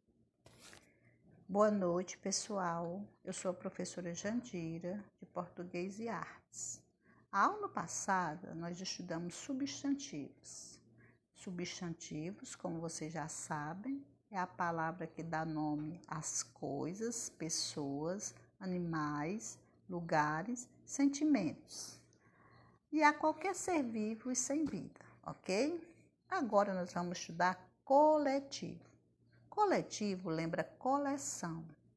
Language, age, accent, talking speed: Portuguese, 50-69, Brazilian, 100 wpm